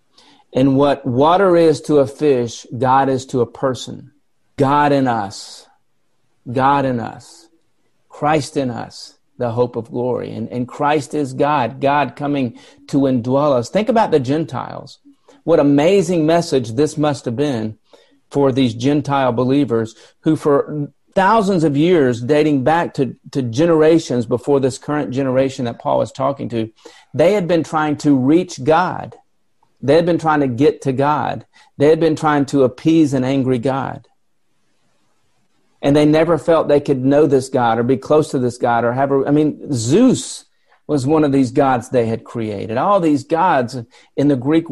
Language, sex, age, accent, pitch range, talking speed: English, male, 40-59, American, 130-160 Hz, 170 wpm